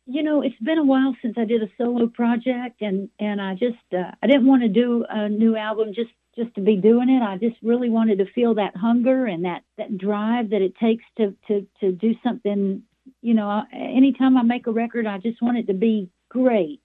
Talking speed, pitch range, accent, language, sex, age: 230 wpm, 190-235 Hz, American, English, female, 50-69